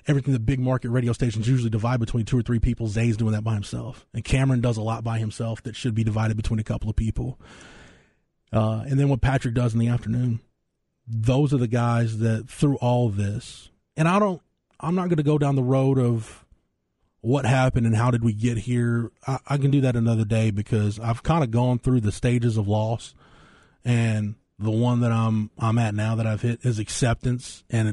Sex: male